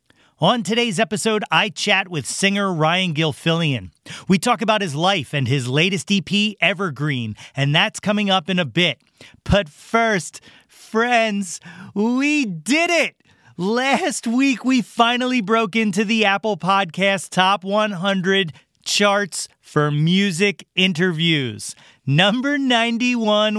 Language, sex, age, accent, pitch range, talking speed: English, male, 30-49, American, 160-215 Hz, 125 wpm